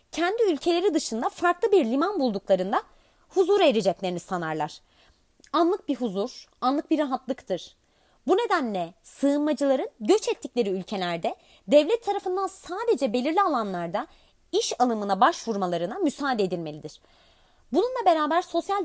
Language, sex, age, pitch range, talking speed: Turkish, female, 30-49, 220-345 Hz, 110 wpm